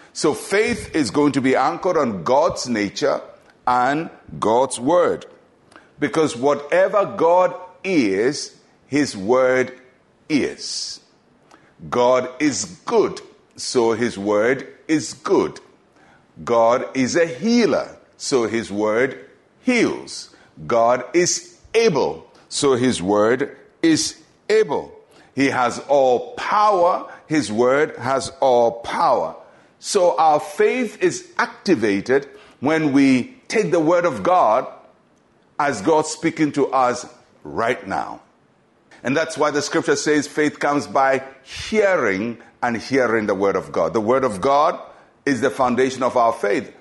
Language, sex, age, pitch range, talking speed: English, male, 60-79, 125-185 Hz, 125 wpm